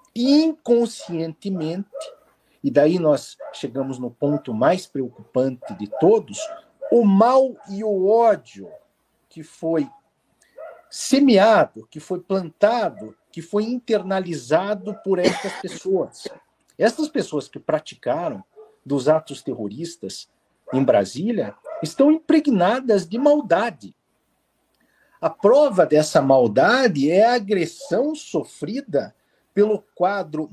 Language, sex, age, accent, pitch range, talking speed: Portuguese, male, 50-69, Brazilian, 150-235 Hz, 100 wpm